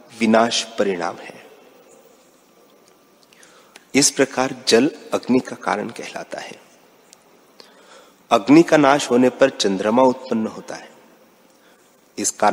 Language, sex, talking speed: Hindi, male, 100 wpm